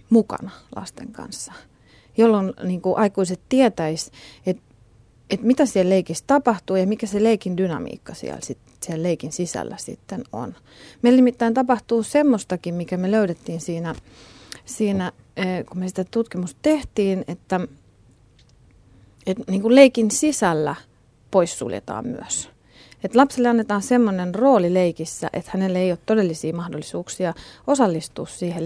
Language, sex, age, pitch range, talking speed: Finnish, female, 30-49, 175-220 Hz, 125 wpm